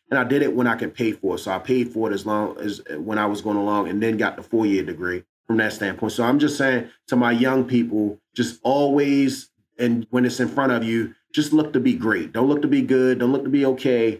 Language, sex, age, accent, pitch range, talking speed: English, male, 30-49, American, 110-135 Hz, 270 wpm